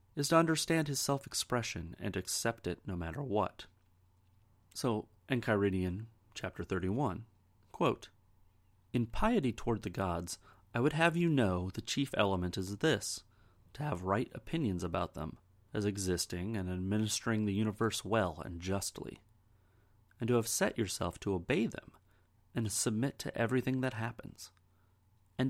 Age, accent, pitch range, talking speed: 30-49, American, 95-125 Hz, 145 wpm